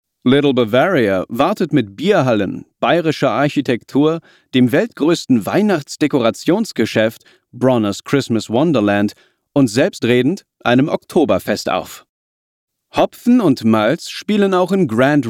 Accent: German